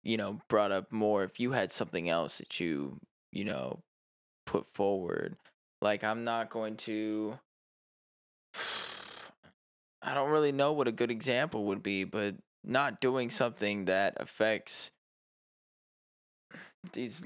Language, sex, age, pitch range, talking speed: English, male, 20-39, 95-120 Hz, 130 wpm